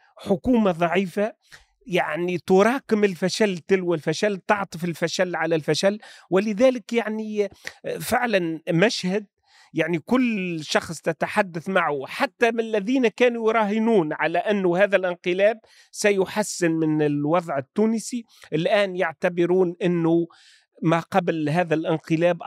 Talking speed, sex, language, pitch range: 105 wpm, male, Arabic, 175-215 Hz